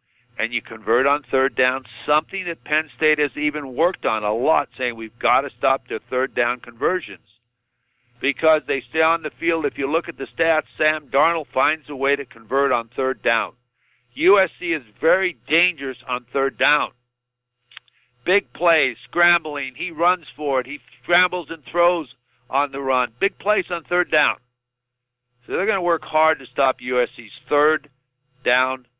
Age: 60-79